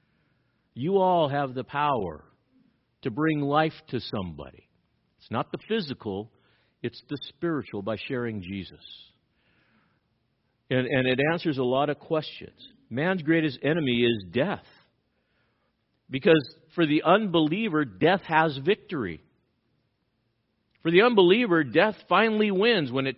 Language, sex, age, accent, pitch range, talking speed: English, male, 50-69, American, 115-155 Hz, 125 wpm